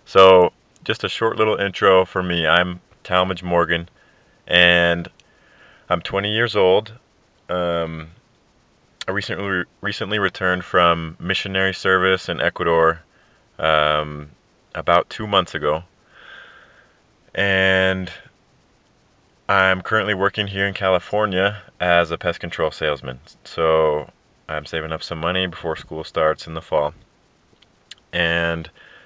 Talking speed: 115 wpm